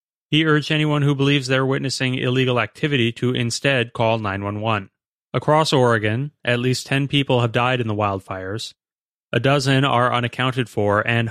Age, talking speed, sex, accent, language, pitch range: 30-49, 160 wpm, male, American, English, 110-135 Hz